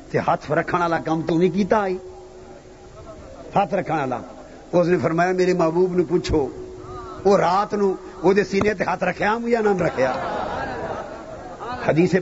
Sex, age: male, 50-69